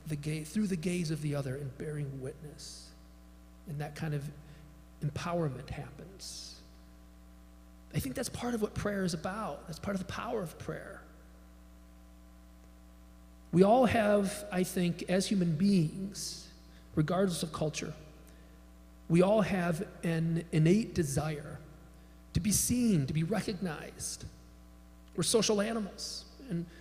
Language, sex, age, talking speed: English, male, 40-59, 135 wpm